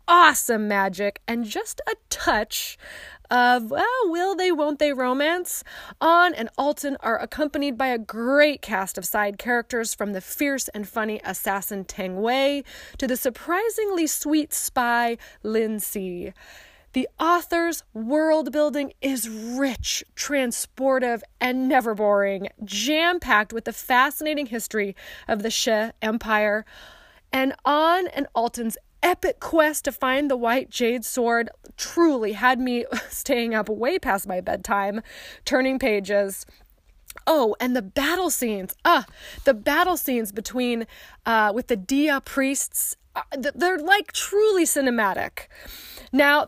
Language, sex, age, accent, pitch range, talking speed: English, female, 20-39, American, 220-295 Hz, 130 wpm